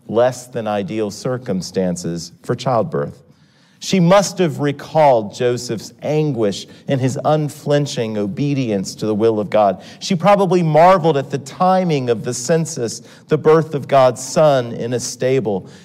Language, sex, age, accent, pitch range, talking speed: English, male, 40-59, American, 120-175 Hz, 145 wpm